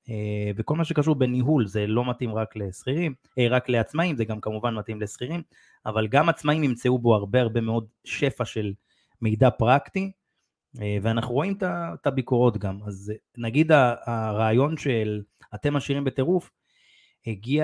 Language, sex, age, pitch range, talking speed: Hebrew, male, 30-49, 110-140 Hz, 140 wpm